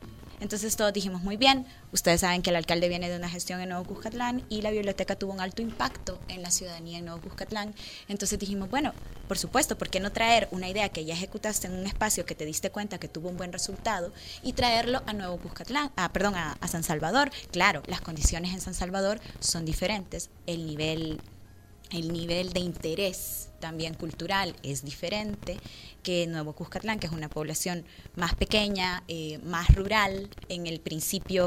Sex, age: female, 20-39